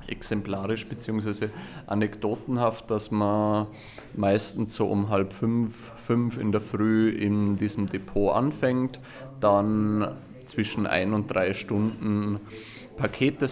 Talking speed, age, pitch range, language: 110 wpm, 30-49, 100-115 Hz, German